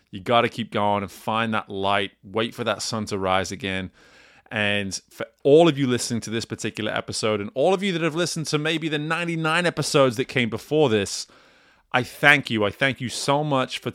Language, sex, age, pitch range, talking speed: English, male, 30-49, 105-125 Hz, 220 wpm